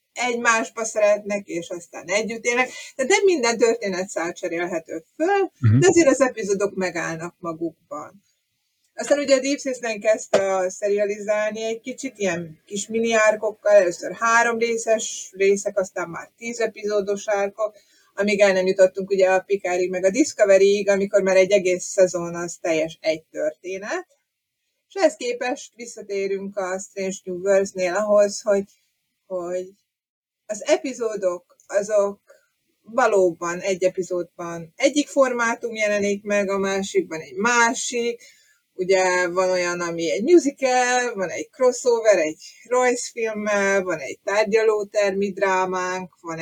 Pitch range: 190-235 Hz